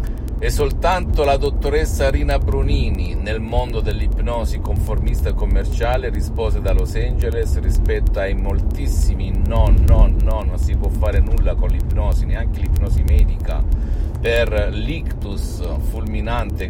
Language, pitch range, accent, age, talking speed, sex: Italian, 80-95 Hz, native, 50-69, 120 wpm, male